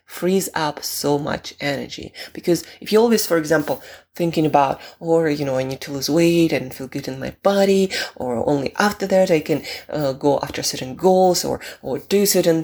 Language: English